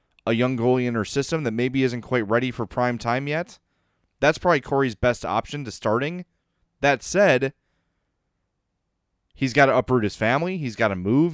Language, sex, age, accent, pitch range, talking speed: English, male, 30-49, American, 115-145 Hz, 180 wpm